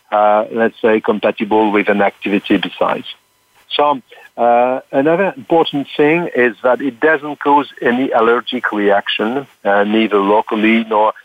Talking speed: 135 wpm